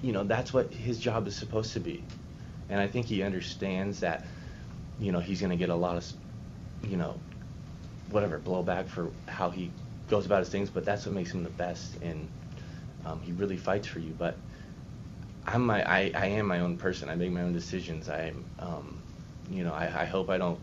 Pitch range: 85-95 Hz